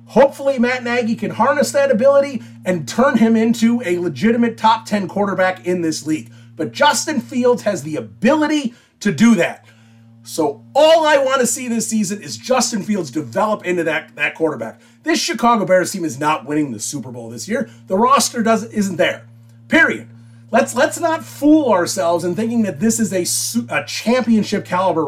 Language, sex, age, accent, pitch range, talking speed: English, male, 30-49, American, 140-230 Hz, 180 wpm